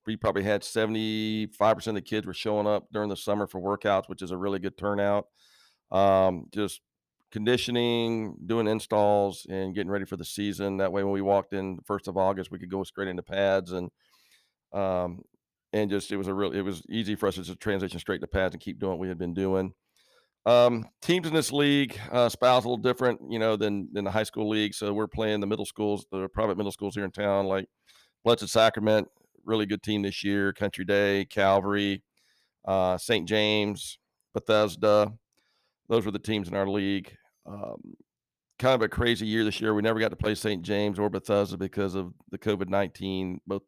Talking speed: 210 wpm